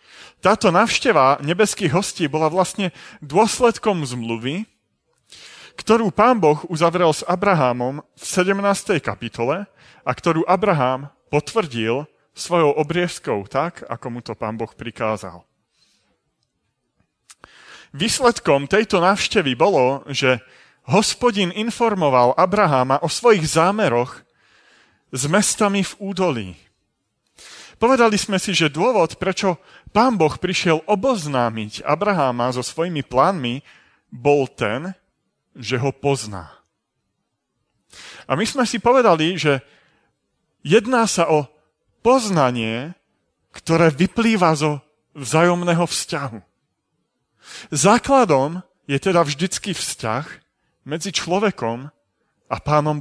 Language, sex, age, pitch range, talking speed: Slovak, male, 30-49, 130-195 Hz, 100 wpm